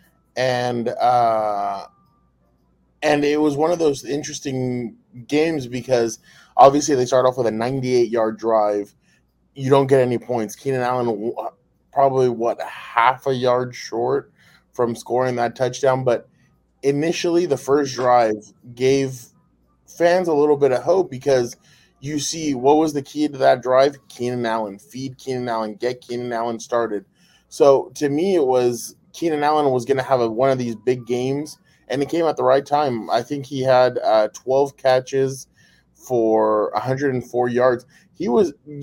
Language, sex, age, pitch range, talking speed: English, male, 20-39, 120-145 Hz, 160 wpm